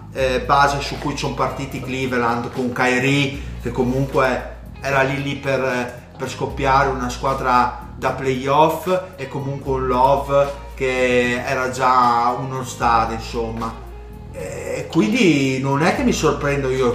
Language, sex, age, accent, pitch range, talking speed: Italian, male, 30-49, native, 120-135 Hz, 140 wpm